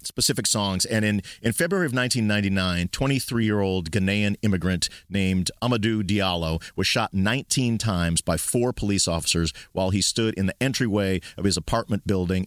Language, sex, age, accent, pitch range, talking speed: English, male, 40-59, American, 90-115 Hz, 155 wpm